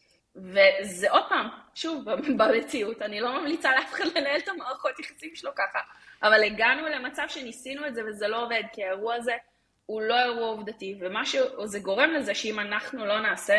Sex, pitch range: female, 185-260 Hz